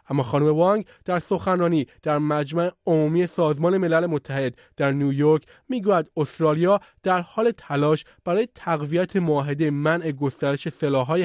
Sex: male